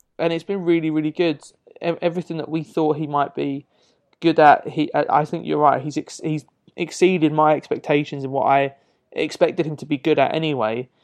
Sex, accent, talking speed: male, British, 195 wpm